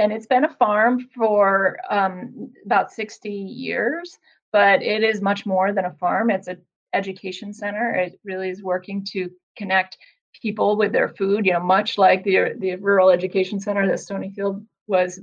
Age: 30-49